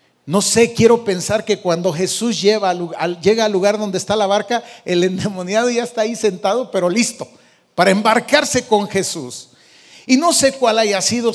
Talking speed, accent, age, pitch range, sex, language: 180 wpm, Mexican, 40-59, 210-295 Hz, male, Spanish